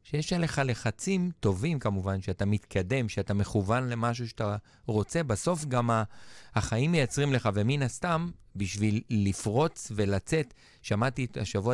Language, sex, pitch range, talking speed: Hebrew, male, 105-135 Hz, 130 wpm